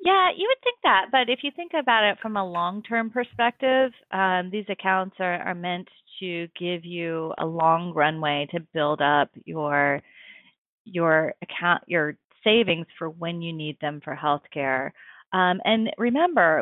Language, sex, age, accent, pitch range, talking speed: English, female, 30-49, American, 165-215 Hz, 170 wpm